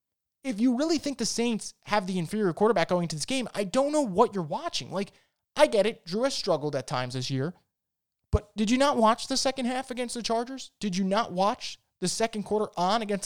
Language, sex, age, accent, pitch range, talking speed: English, male, 20-39, American, 170-235 Hz, 230 wpm